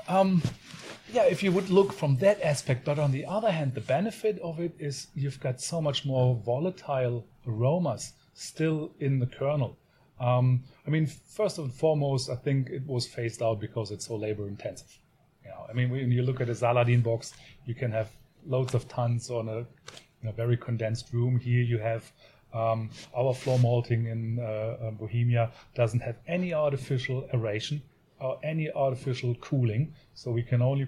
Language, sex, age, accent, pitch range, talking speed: English, male, 30-49, German, 120-145 Hz, 175 wpm